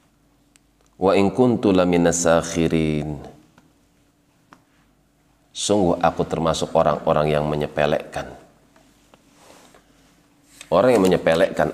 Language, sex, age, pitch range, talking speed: Indonesian, male, 30-49, 75-90 Hz, 55 wpm